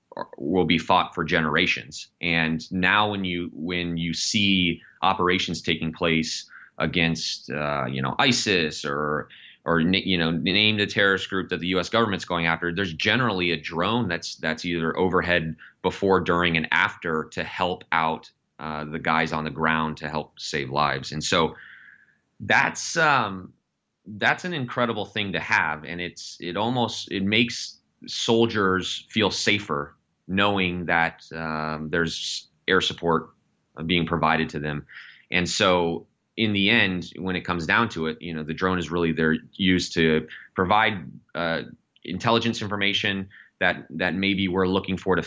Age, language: 30-49, English